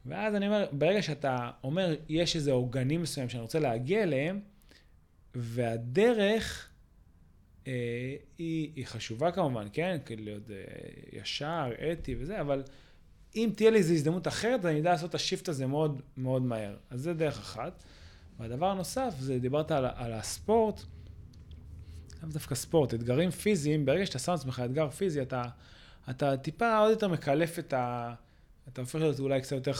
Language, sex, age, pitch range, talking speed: Hebrew, male, 20-39, 120-165 Hz, 165 wpm